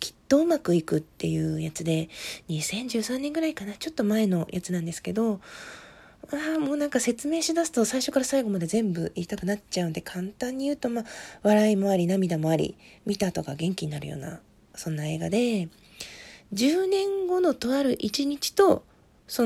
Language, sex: Japanese, female